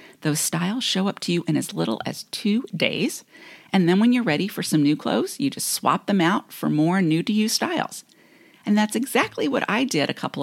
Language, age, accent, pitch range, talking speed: English, 40-59, American, 160-240 Hz, 220 wpm